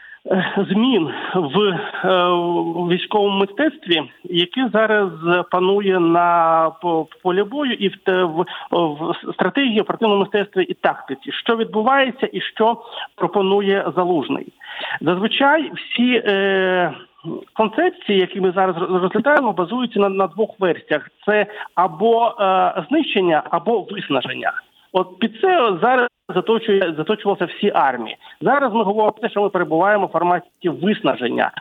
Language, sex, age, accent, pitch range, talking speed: Ukrainian, male, 50-69, native, 180-225 Hz, 120 wpm